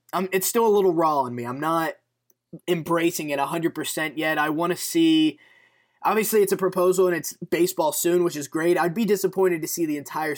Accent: American